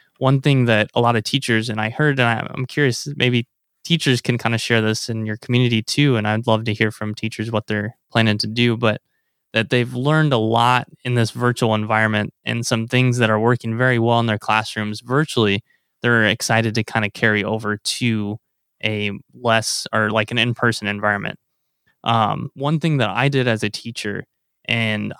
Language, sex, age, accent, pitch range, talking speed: English, male, 20-39, American, 110-130 Hz, 200 wpm